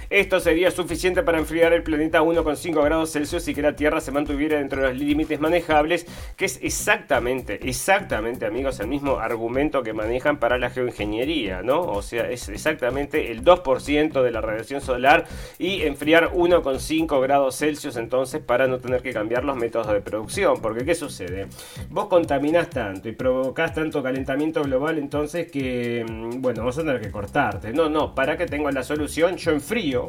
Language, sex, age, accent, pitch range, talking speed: Spanish, male, 40-59, Argentinian, 125-160 Hz, 175 wpm